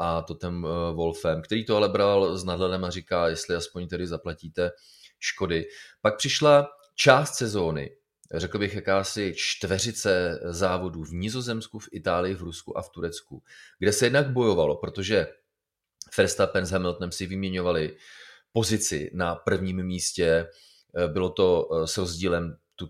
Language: Czech